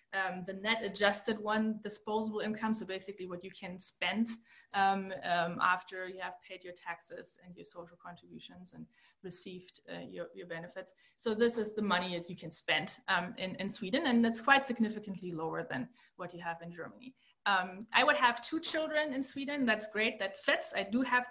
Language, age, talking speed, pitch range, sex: English, 20-39, 195 wpm, 180-225 Hz, female